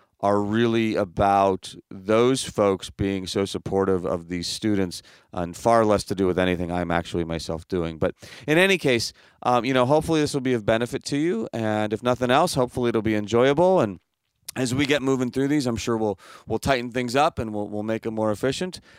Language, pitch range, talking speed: English, 105-130 Hz, 210 wpm